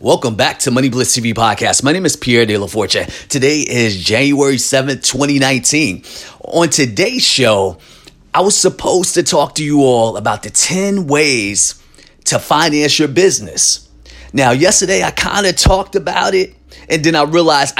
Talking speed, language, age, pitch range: 170 wpm, English, 30-49, 120-150 Hz